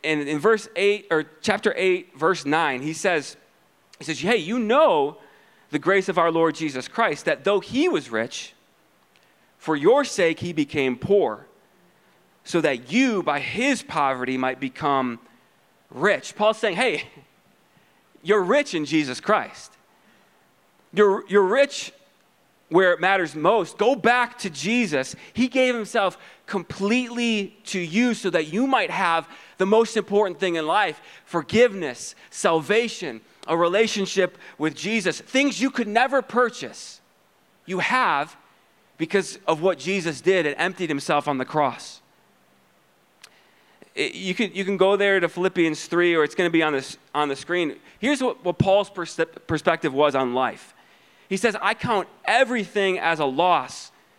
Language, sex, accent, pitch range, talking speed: English, male, American, 155-215 Hz, 145 wpm